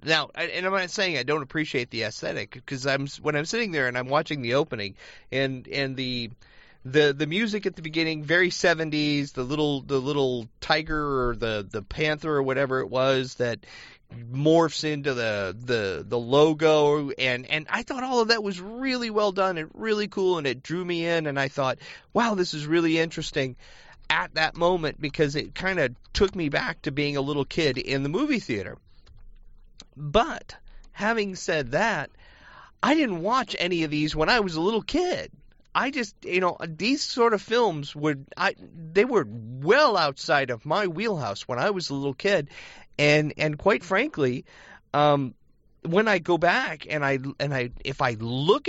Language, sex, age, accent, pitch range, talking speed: English, male, 30-49, American, 130-185 Hz, 185 wpm